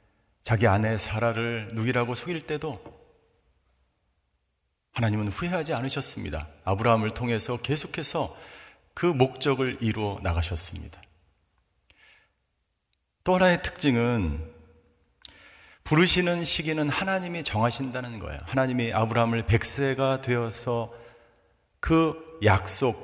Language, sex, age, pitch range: Korean, male, 40-59, 90-140 Hz